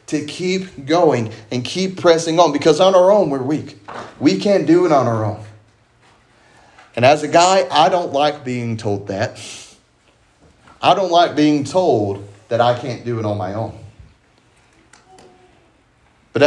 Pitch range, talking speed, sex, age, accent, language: 120-150 Hz, 160 wpm, male, 30-49, American, English